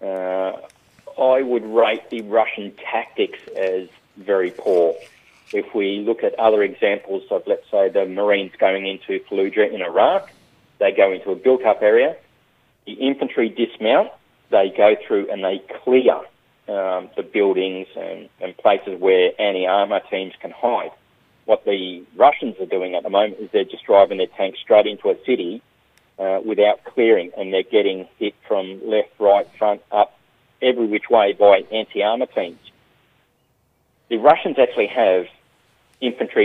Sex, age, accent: male, 40-59, Australian